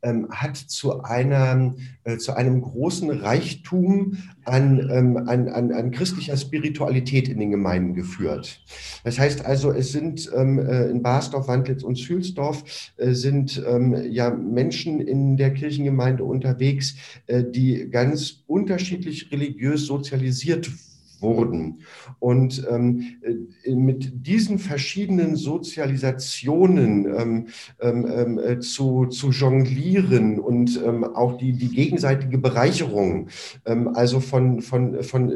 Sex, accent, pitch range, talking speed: male, German, 120-140 Hz, 105 wpm